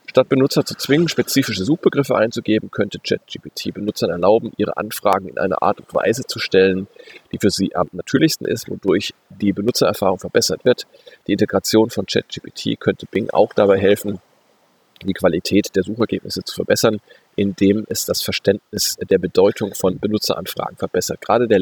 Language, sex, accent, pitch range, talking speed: German, male, German, 100-125 Hz, 160 wpm